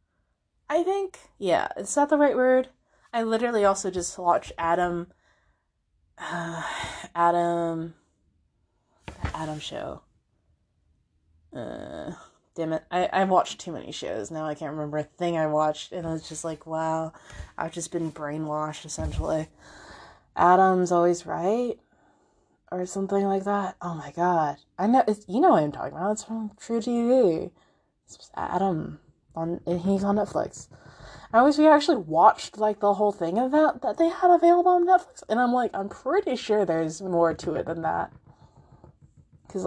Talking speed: 160 wpm